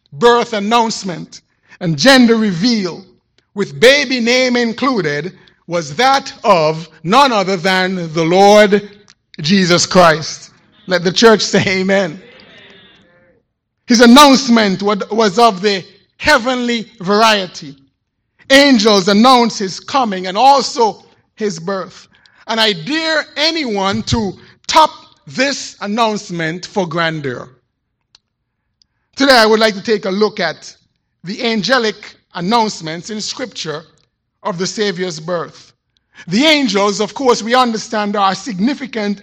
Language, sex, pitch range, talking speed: English, male, 180-240 Hz, 115 wpm